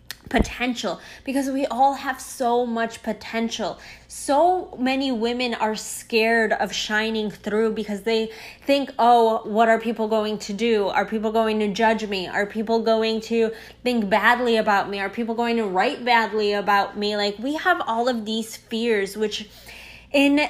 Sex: female